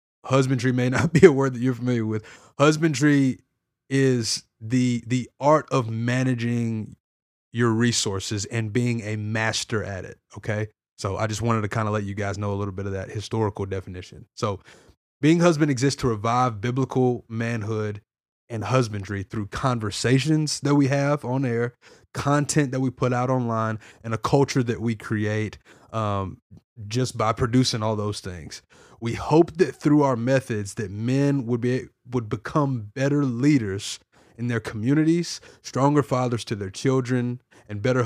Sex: male